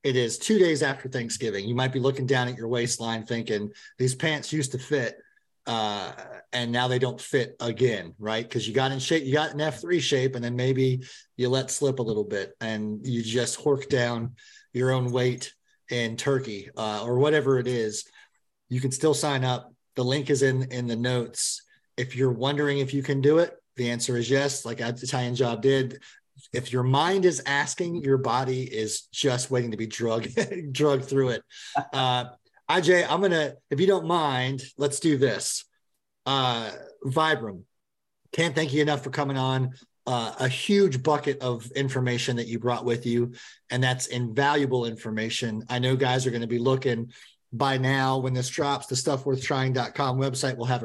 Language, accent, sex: English, American, male